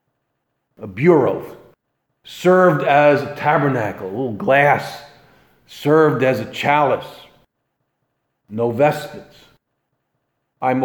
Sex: male